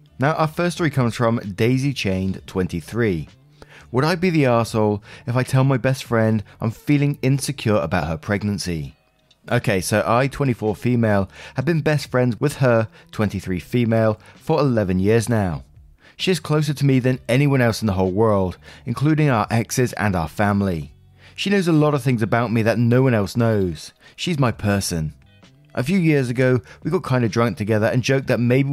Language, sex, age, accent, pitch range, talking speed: English, male, 30-49, British, 100-140 Hz, 190 wpm